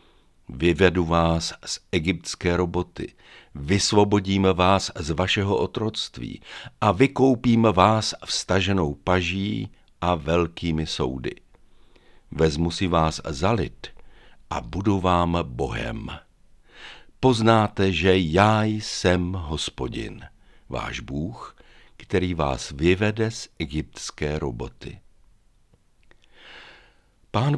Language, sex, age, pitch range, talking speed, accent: Czech, male, 60-79, 80-105 Hz, 85 wpm, native